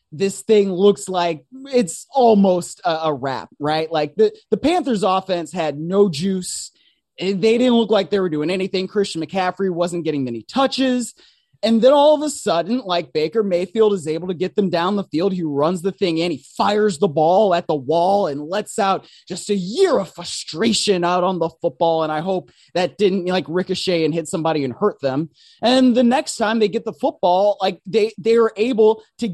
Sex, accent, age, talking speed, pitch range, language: male, American, 20-39, 205 wpm, 175-225 Hz, English